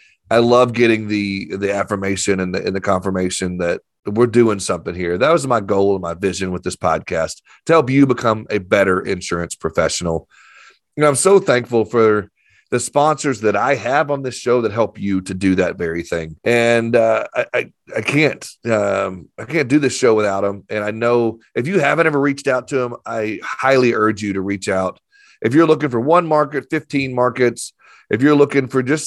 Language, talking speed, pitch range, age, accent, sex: English, 210 wpm, 100-135 Hz, 30-49, American, male